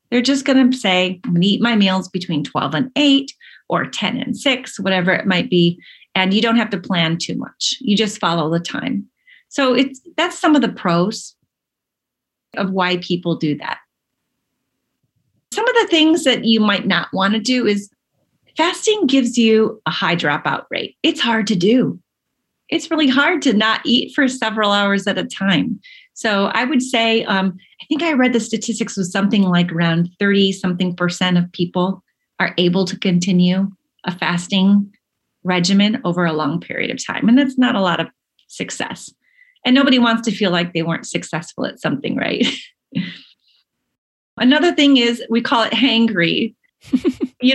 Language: English